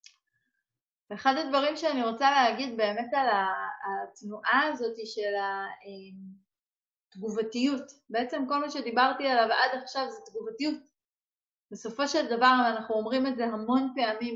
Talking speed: 120 wpm